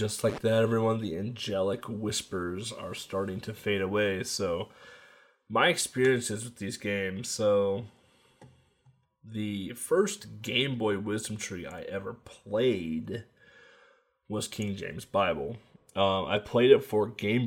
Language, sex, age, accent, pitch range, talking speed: English, male, 20-39, American, 95-115 Hz, 130 wpm